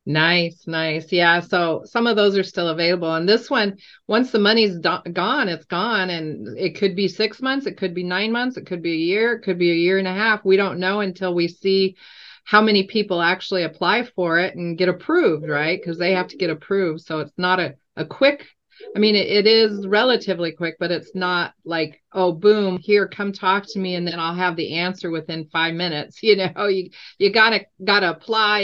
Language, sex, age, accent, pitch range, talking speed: English, female, 40-59, American, 170-205 Hz, 225 wpm